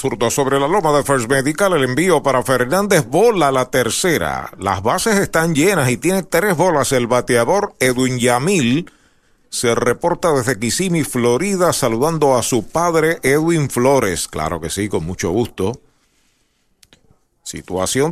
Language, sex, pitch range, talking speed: Spanish, male, 120-170 Hz, 145 wpm